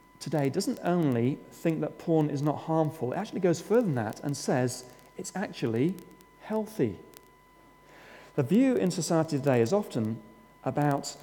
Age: 40-59